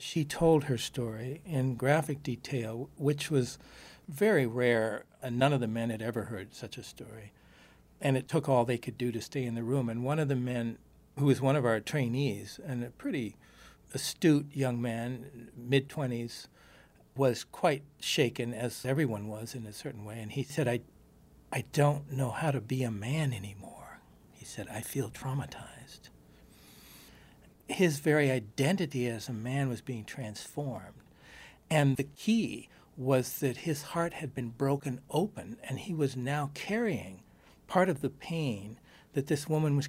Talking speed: 170 wpm